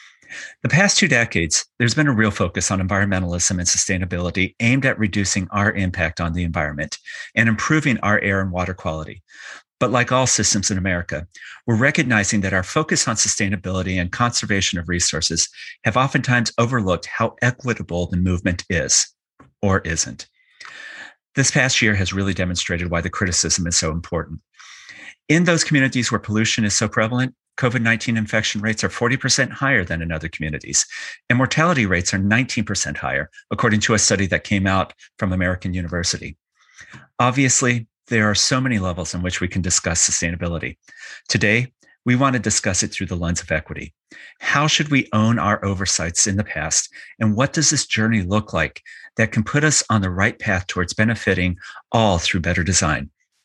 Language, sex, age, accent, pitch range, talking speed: English, male, 40-59, American, 90-120 Hz, 175 wpm